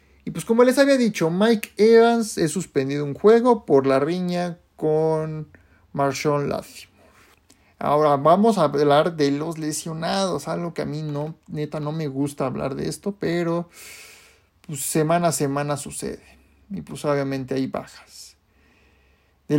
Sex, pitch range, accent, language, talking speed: male, 140-210 Hz, Mexican, Spanish, 150 wpm